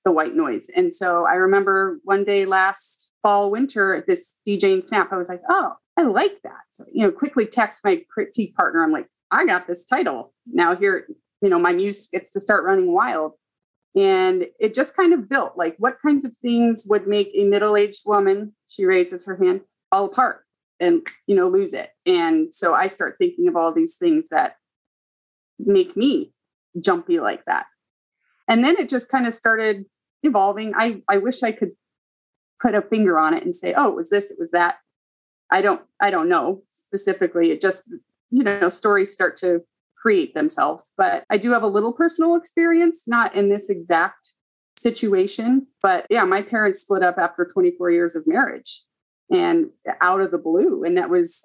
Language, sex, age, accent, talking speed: English, female, 30-49, American, 190 wpm